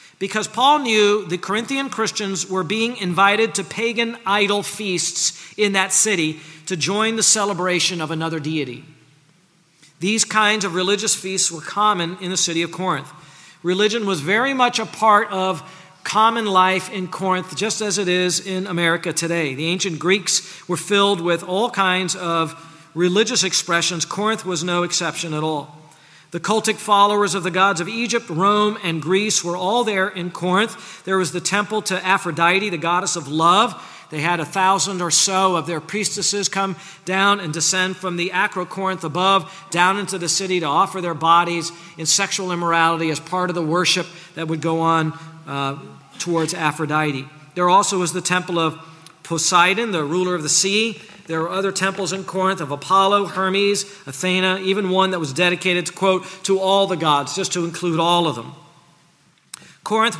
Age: 40-59